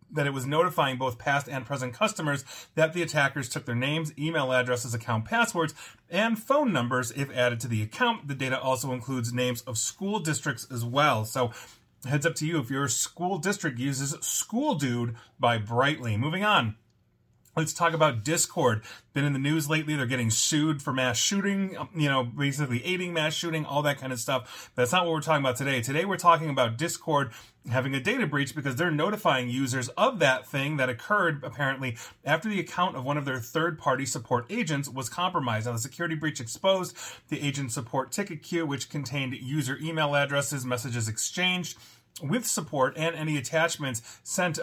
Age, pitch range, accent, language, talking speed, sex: 30-49, 125-160 Hz, American, English, 190 wpm, male